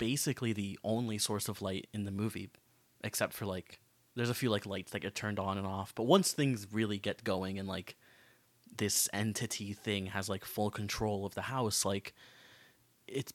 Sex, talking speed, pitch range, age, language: male, 195 wpm, 100-125 Hz, 20-39, English